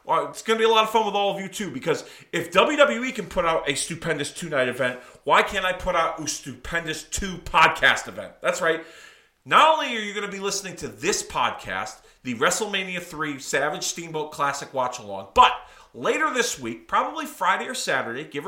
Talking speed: 210 wpm